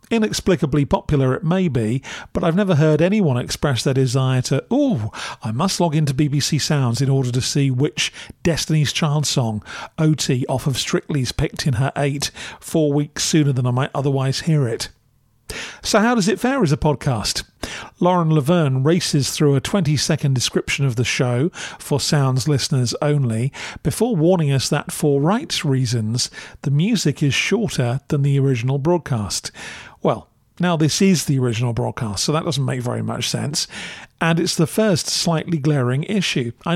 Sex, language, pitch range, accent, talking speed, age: male, English, 135-170 Hz, British, 170 wpm, 40-59